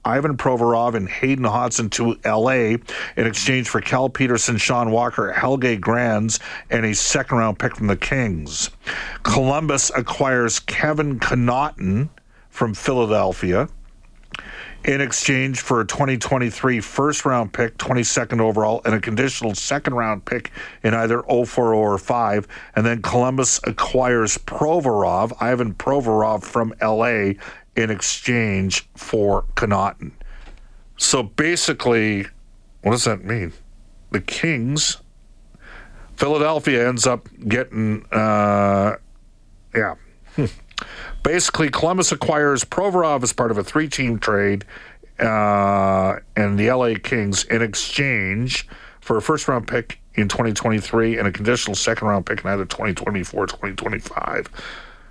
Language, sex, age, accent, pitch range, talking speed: English, male, 50-69, American, 105-130 Hz, 120 wpm